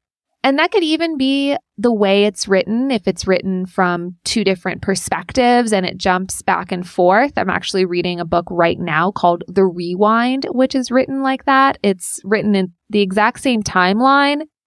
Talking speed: 180 wpm